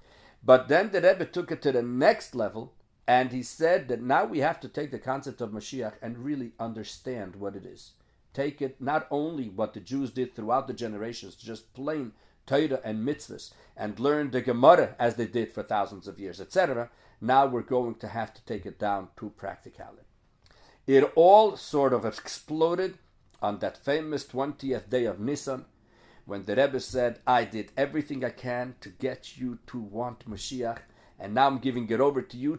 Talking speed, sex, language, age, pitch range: 190 wpm, male, English, 50-69, 110-140 Hz